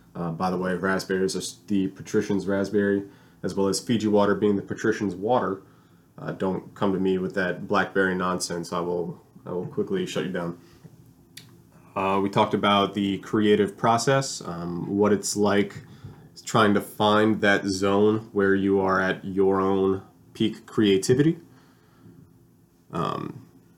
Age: 20-39